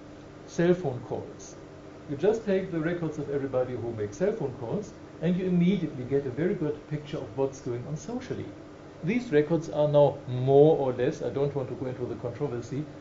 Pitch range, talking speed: 130-170 Hz, 200 wpm